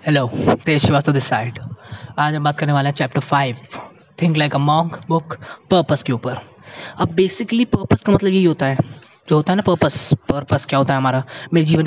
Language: Hindi